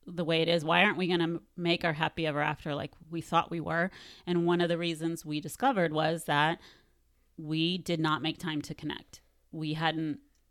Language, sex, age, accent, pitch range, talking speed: English, female, 30-49, American, 155-190 Hz, 210 wpm